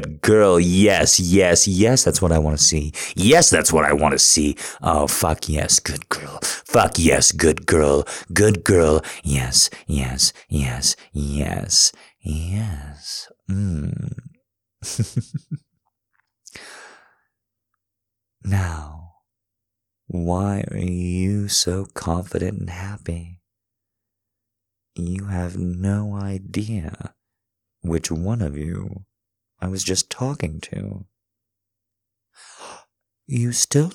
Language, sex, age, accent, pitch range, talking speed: English, male, 30-49, American, 85-110 Hz, 100 wpm